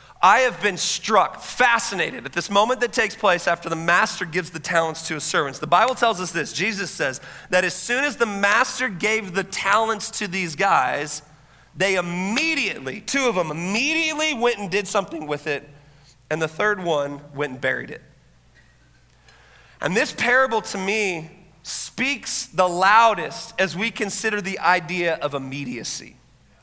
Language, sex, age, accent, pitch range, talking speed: English, male, 40-59, American, 165-235 Hz, 165 wpm